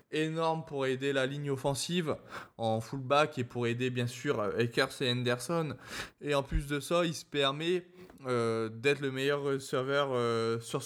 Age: 20-39